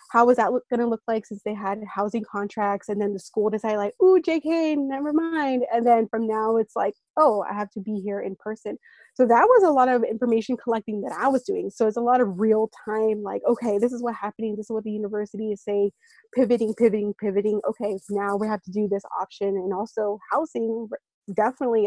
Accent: American